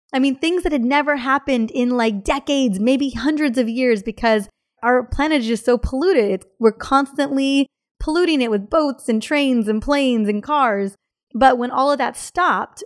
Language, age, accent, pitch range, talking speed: English, 30-49, American, 220-275 Hz, 180 wpm